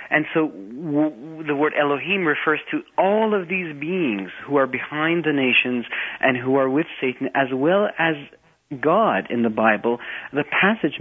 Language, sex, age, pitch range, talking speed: English, male, 40-59, 115-145 Hz, 170 wpm